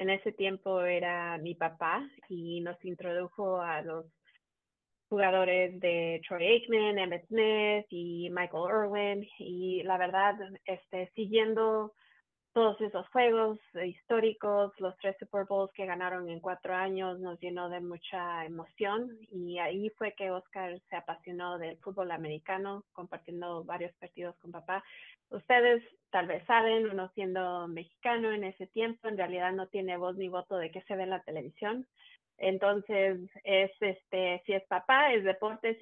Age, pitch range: 20-39, 180-210 Hz